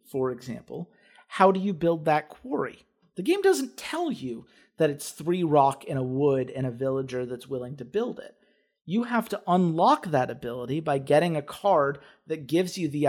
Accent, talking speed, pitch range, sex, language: American, 195 wpm, 130-165 Hz, male, English